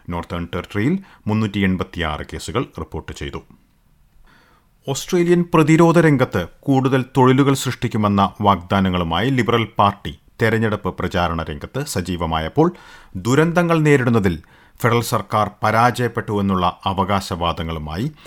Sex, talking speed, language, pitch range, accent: male, 80 wpm, Malayalam, 90-120 Hz, native